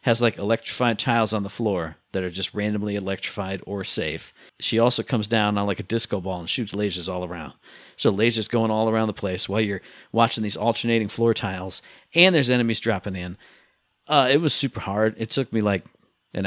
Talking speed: 210 wpm